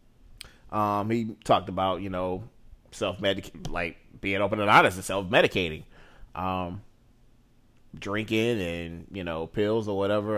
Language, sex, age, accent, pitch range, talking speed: English, male, 30-49, American, 95-120 Hz, 125 wpm